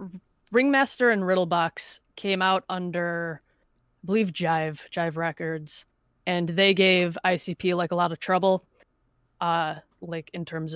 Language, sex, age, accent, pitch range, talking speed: English, female, 20-39, American, 165-185 Hz, 135 wpm